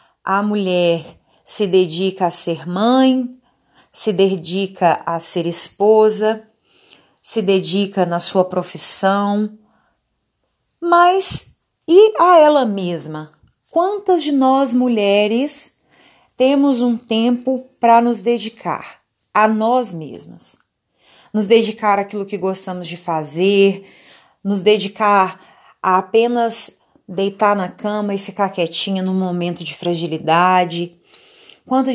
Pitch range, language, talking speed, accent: 190-235 Hz, Portuguese, 105 wpm, Brazilian